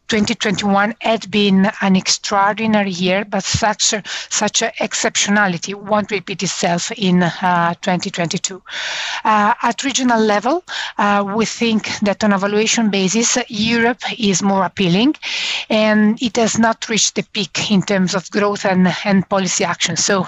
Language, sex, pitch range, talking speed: English, female, 185-220 Hz, 145 wpm